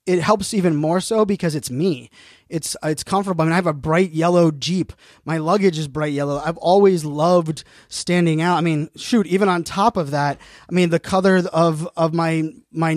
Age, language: 20-39, English